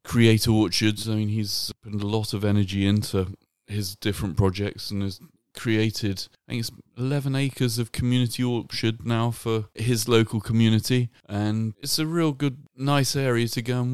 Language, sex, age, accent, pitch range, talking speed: English, male, 30-49, British, 100-120 Hz, 170 wpm